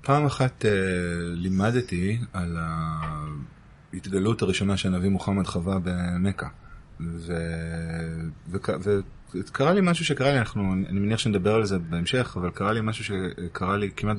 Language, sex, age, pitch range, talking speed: Hebrew, male, 30-49, 95-140 Hz, 130 wpm